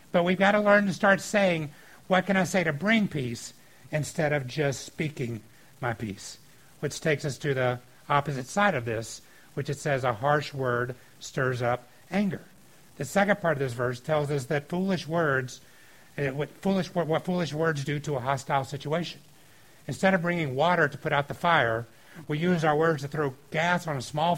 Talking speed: 190 wpm